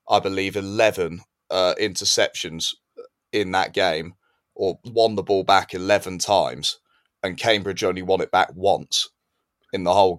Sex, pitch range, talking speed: male, 90-105 Hz, 145 wpm